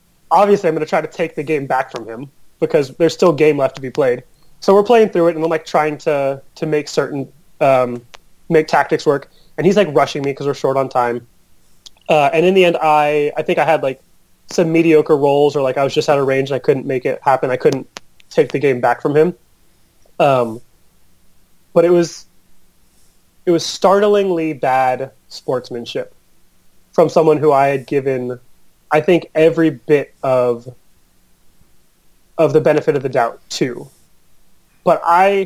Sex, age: male, 30-49